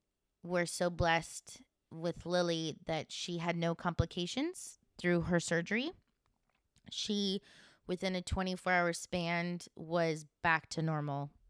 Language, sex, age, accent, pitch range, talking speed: English, female, 20-39, American, 150-175 Hz, 115 wpm